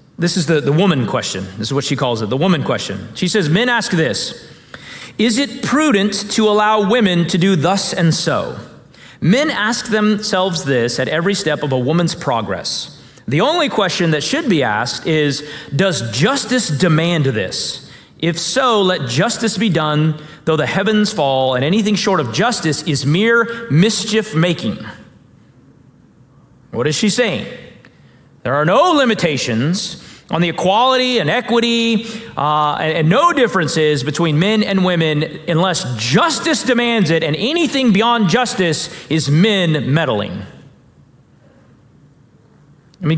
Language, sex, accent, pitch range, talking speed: English, male, American, 150-210 Hz, 150 wpm